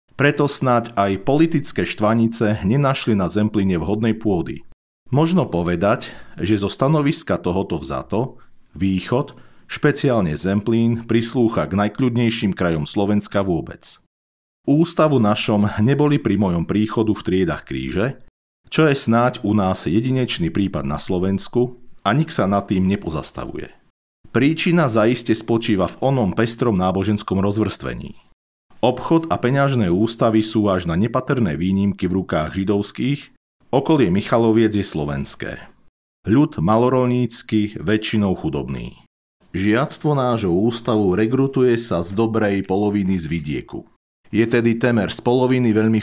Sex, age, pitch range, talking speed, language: male, 40-59, 95-125 Hz, 125 wpm, Slovak